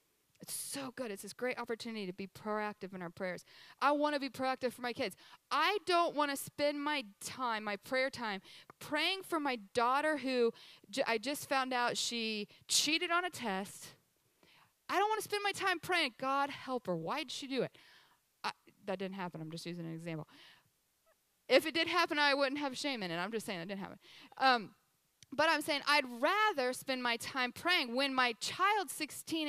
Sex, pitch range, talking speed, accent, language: female, 225-300 Hz, 205 wpm, American, English